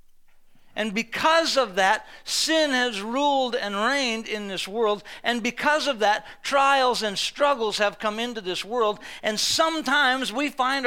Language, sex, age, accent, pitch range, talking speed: English, male, 50-69, American, 210-270 Hz, 155 wpm